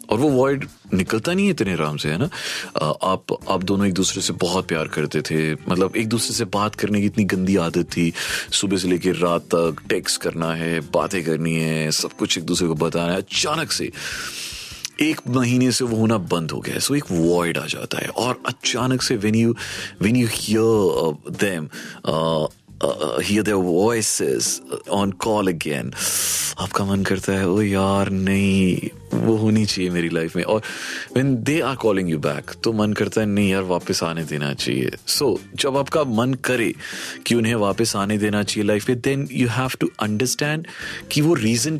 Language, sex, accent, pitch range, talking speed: Hindi, male, native, 90-125 Hz, 185 wpm